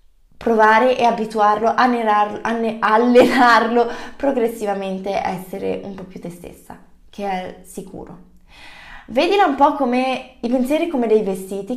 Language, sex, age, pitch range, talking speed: Italian, female, 20-39, 215-275 Hz, 135 wpm